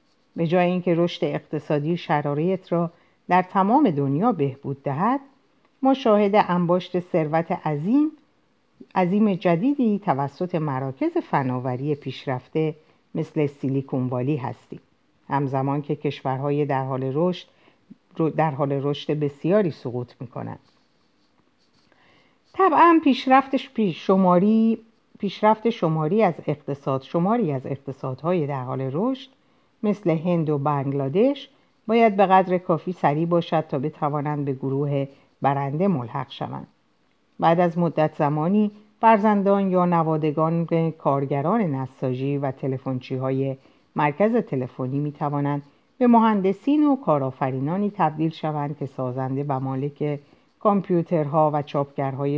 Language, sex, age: Persian, female, 50-69